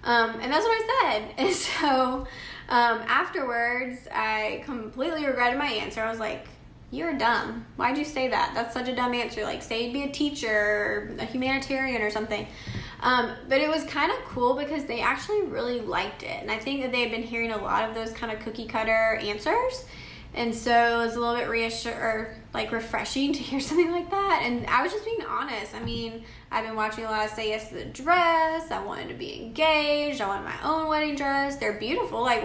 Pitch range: 225-280 Hz